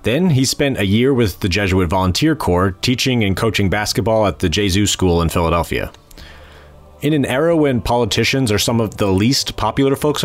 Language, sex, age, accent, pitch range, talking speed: English, male, 30-49, American, 90-125 Hz, 185 wpm